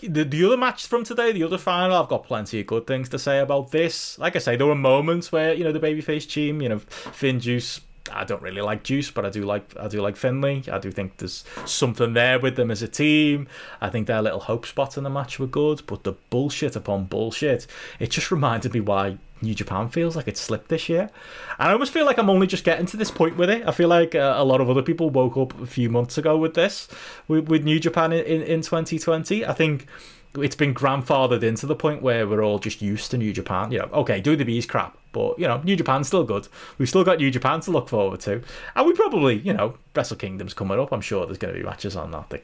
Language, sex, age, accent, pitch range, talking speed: English, male, 20-39, British, 110-155 Hz, 255 wpm